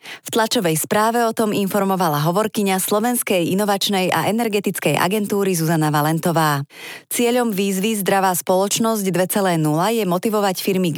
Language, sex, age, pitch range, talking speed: Slovak, female, 30-49, 170-215 Hz, 125 wpm